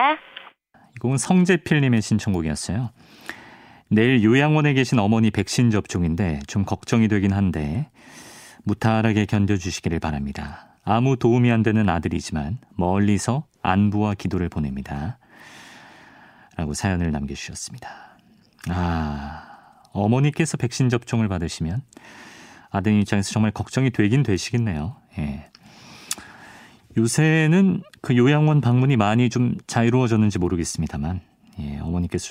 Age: 40-59